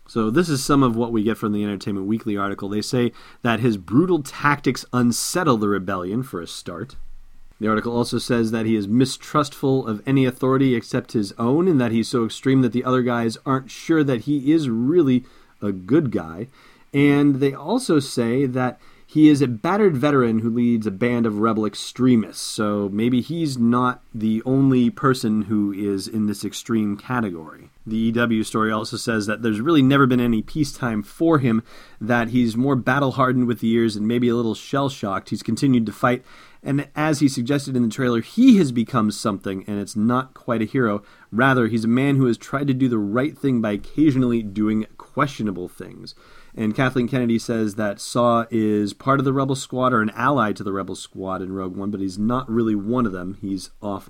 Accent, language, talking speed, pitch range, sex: American, English, 200 wpm, 110-130 Hz, male